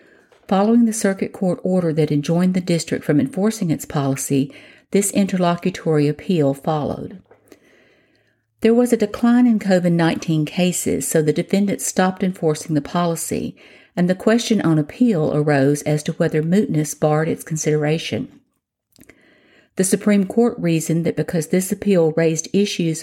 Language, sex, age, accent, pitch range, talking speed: English, female, 50-69, American, 155-200 Hz, 140 wpm